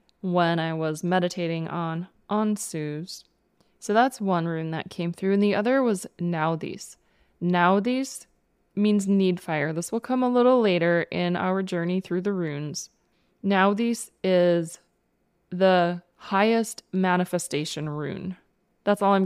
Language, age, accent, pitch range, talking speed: English, 20-39, American, 175-205 Hz, 135 wpm